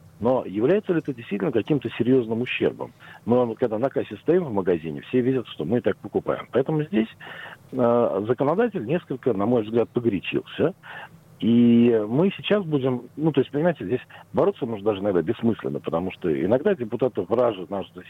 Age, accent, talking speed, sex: 50-69, native, 170 wpm, male